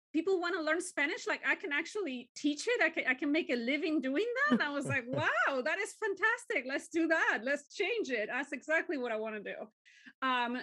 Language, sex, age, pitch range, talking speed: English, female, 30-49, 235-290 Hz, 235 wpm